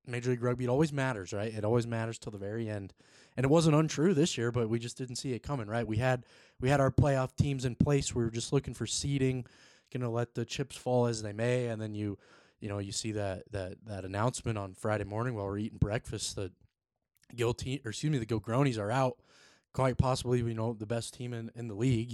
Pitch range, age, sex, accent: 110-130 Hz, 20-39, male, American